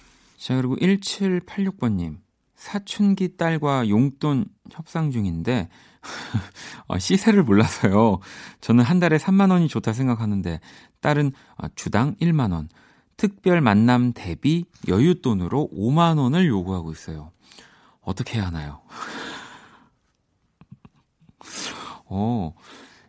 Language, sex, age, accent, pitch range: Korean, male, 40-59, native, 100-165 Hz